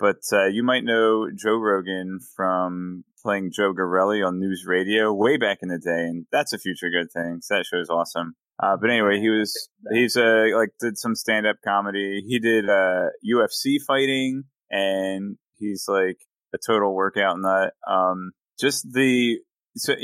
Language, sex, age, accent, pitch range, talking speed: English, male, 20-39, American, 90-115 Hz, 175 wpm